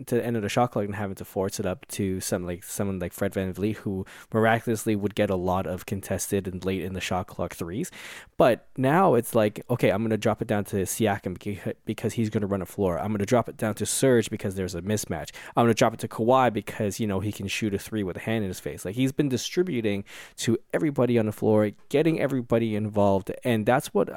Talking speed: 245 wpm